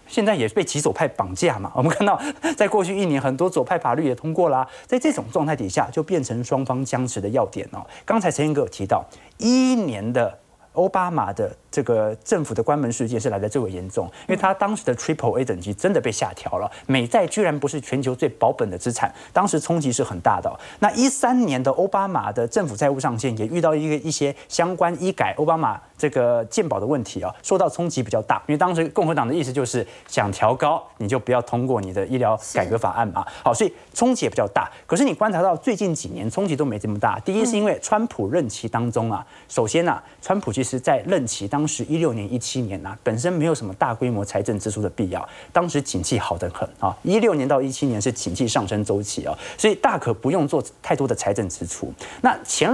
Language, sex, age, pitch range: Chinese, male, 30-49, 115-180 Hz